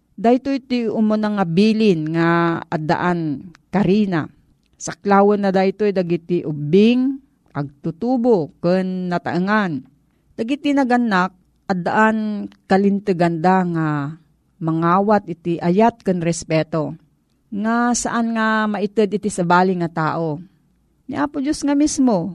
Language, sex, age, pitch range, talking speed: Filipino, female, 40-59, 175-220 Hz, 120 wpm